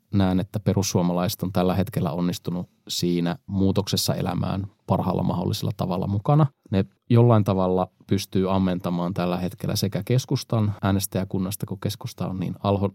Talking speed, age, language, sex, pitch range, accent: 135 wpm, 20-39, Finnish, male, 95-110 Hz, native